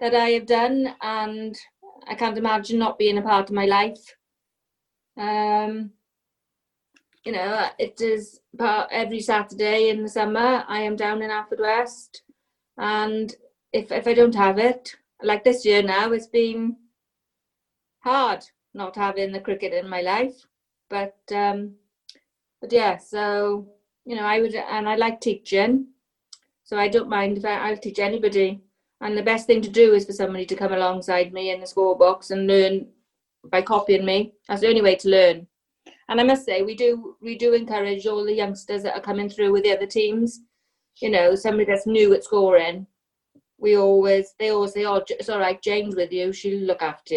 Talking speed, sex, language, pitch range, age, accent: 185 wpm, female, English, 195-225 Hz, 30-49, British